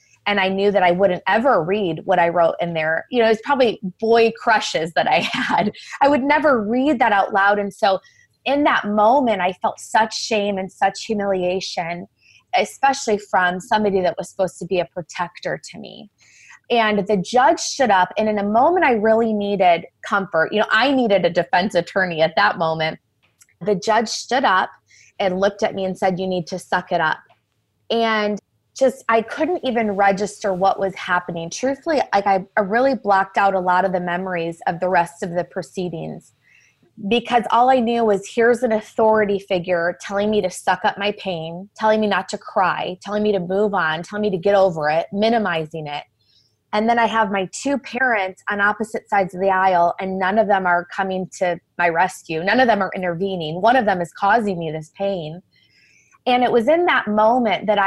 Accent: American